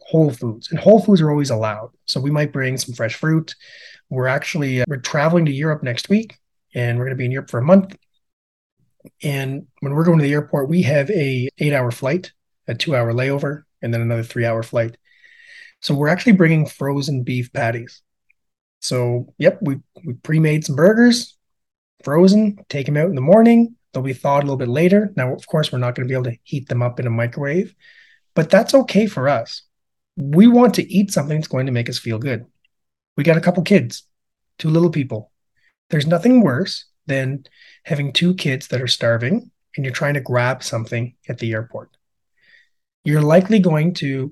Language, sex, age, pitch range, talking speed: English, male, 30-49, 125-175 Hz, 200 wpm